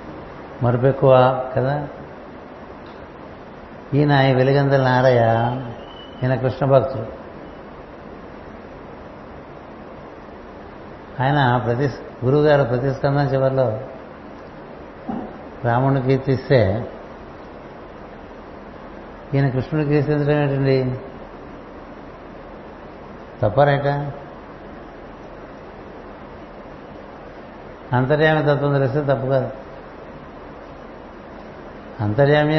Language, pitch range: Telugu, 125-145 Hz